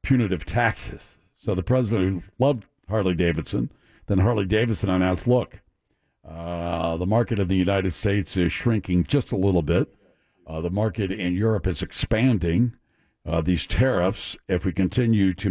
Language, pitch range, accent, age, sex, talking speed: English, 95-130 Hz, American, 60-79, male, 145 wpm